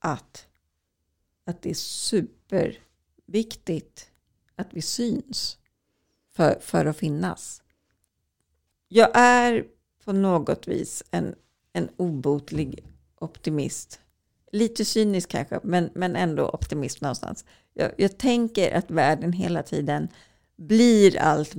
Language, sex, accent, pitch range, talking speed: Swedish, female, native, 145-180 Hz, 105 wpm